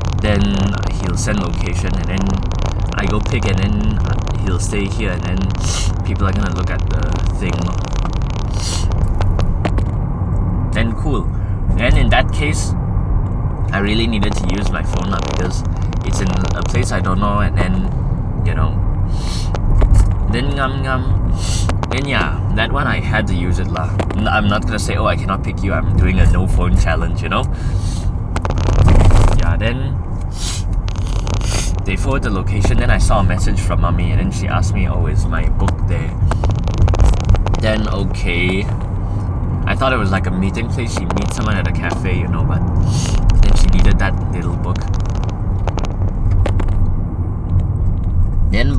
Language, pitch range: English, 90-100 Hz